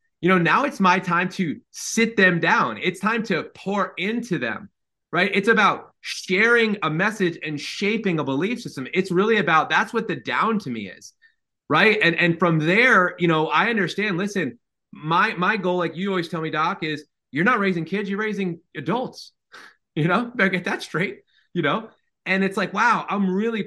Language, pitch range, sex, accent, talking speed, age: English, 160-210 Hz, male, American, 200 wpm, 30-49